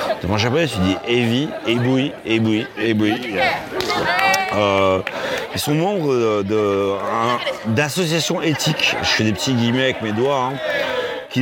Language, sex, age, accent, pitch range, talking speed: French, male, 30-49, French, 120-165 Hz, 150 wpm